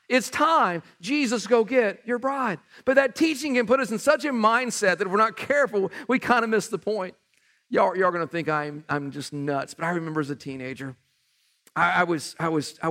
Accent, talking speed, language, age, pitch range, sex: American, 230 wpm, English, 50-69, 170-240 Hz, male